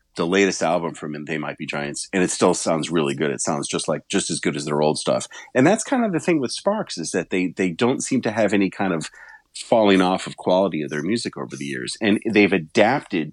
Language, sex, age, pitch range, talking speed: English, male, 40-59, 80-100 Hz, 255 wpm